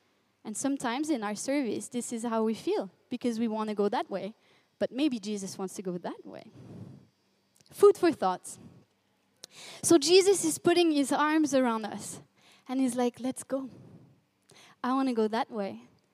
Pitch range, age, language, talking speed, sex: 230-290 Hz, 20-39, French, 175 wpm, female